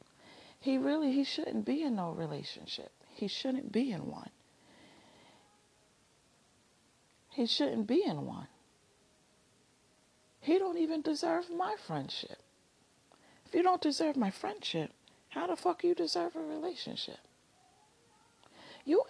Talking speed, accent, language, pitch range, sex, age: 120 wpm, American, English, 170-275 Hz, female, 40-59